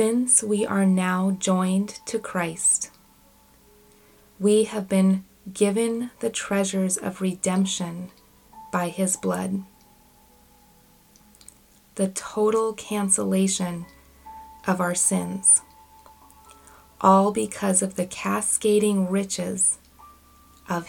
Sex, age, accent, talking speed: female, 20-39, American, 90 wpm